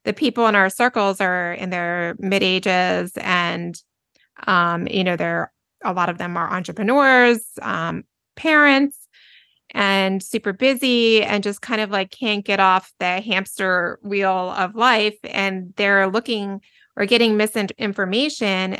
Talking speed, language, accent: 145 wpm, English, American